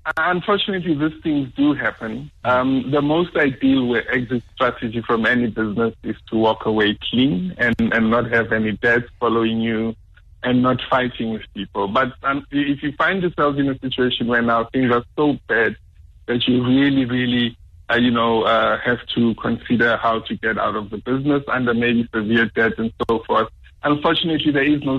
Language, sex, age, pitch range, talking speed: English, male, 50-69, 110-130 Hz, 180 wpm